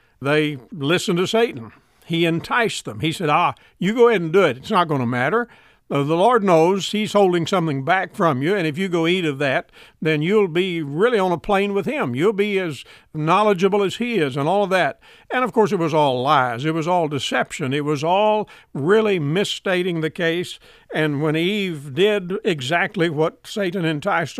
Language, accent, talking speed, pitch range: English, American, 205 wpm, 155-200 Hz